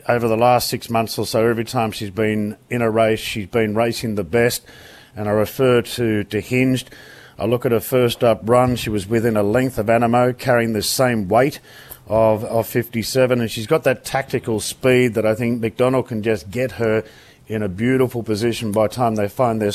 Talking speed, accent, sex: 215 wpm, Australian, male